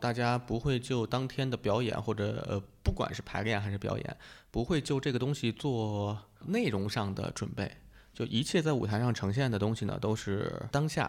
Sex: male